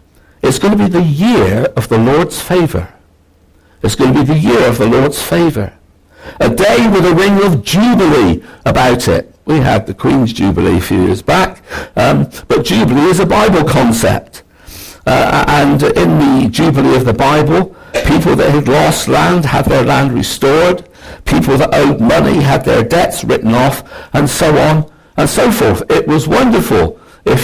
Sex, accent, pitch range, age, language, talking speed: male, British, 90-150 Hz, 60-79, English, 175 wpm